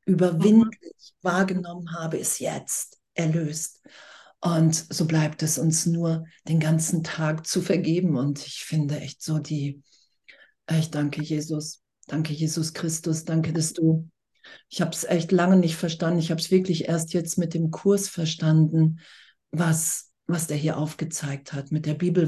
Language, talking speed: German, 155 wpm